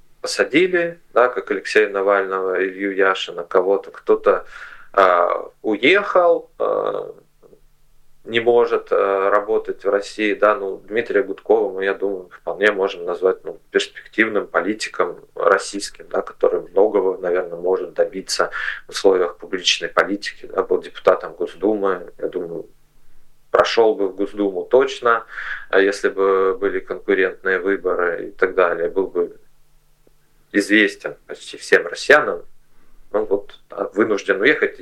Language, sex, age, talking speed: Russian, male, 30-49, 125 wpm